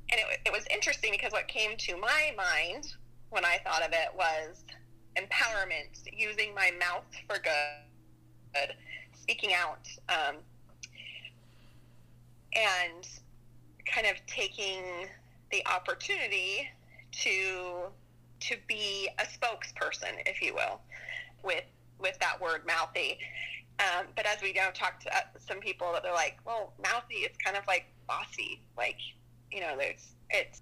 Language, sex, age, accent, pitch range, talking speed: English, female, 30-49, American, 120-195 Hz, 135 wpm